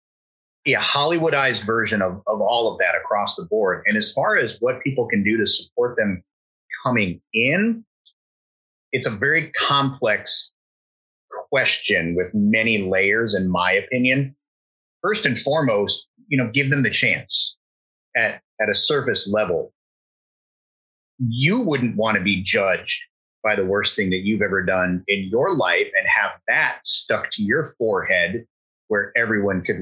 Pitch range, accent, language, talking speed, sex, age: 100-140 Hz, American, English, 155 wpm, male, 30-49